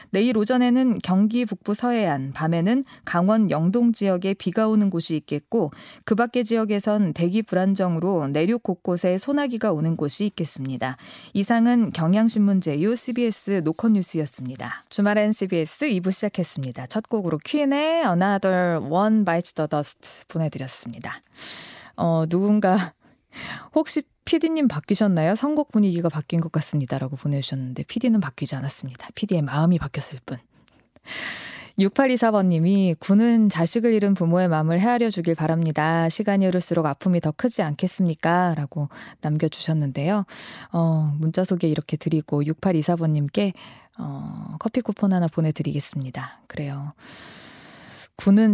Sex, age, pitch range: female, 20-39, 155-210 Hz